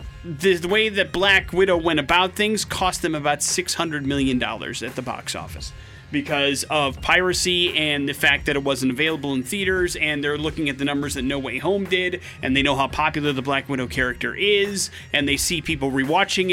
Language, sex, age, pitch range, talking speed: English, male, 30-49, 135-170 Hz, 205 wpm